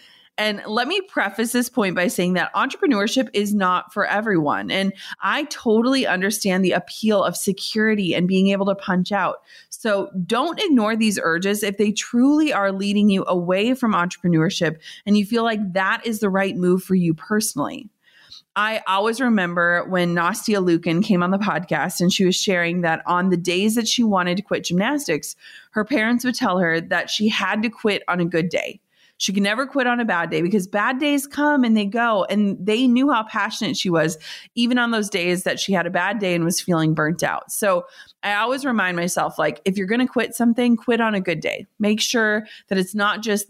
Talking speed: 210 wpm